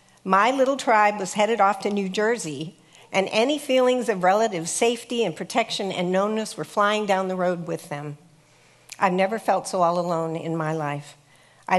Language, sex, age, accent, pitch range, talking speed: English, female, 50-69, American, 165-215 Hz, 185 wpm